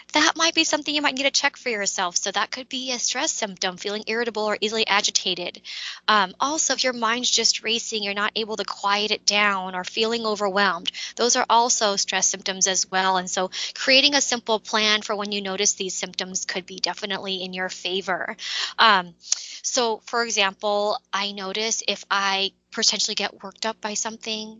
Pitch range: 195-245 Hz